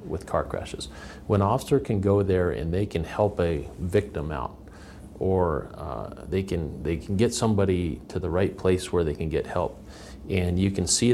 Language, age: English, 40-59